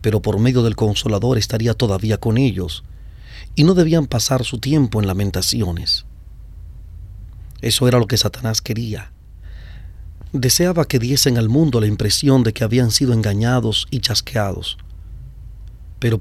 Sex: male